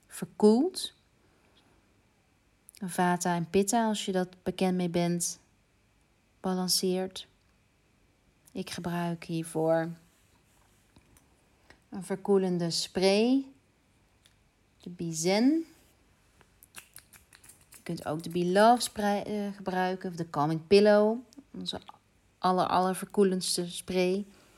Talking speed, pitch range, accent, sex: 90 wpm, 160-185 Hz, Dutch, female